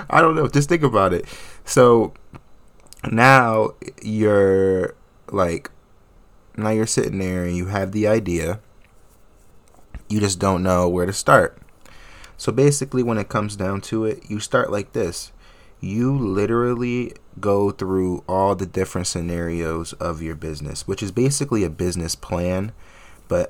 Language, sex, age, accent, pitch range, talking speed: English, male, 20-39, American, 90-115 Hz, 145 wpm